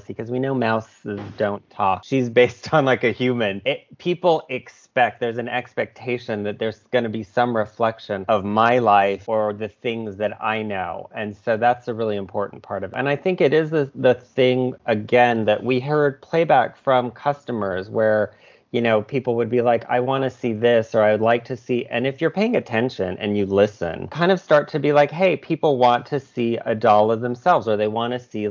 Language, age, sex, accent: English, 30-49, male, American